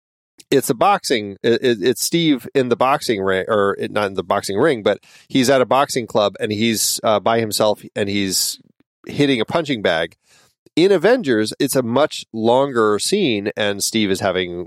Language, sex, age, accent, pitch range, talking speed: English, male, 30-49, American, 100-130 Hz, 170 wpm